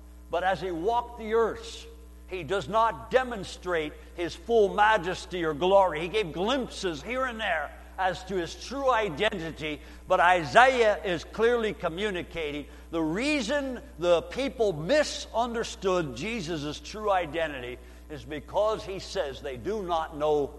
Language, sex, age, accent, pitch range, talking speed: English, male, 60-79, American, 160-230 Hz, 135 wpm